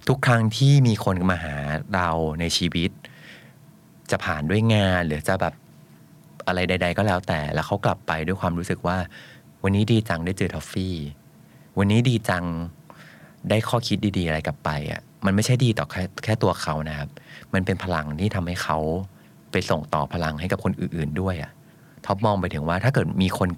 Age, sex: 30-49, male